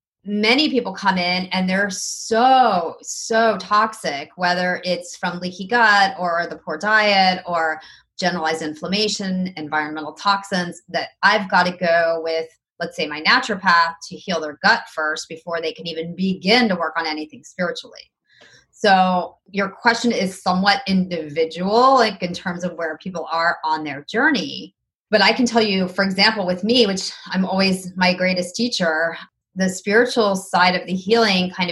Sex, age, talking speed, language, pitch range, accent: female, 30-49, 165 wpm, English, 165-195 Hz, American